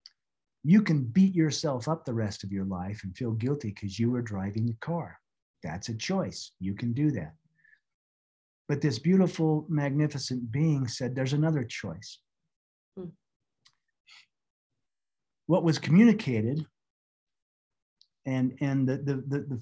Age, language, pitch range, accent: 50-69, English, 115-155 Hz, American